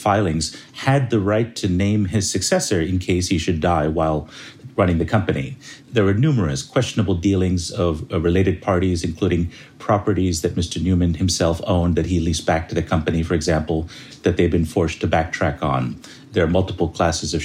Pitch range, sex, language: 80-105 Hz, male, English